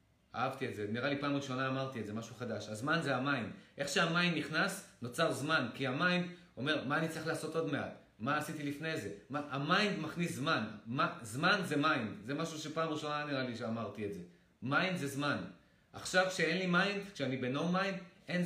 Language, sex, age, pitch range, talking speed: Hebrew, male, 30-49, 125-160 Hz, 135 wpm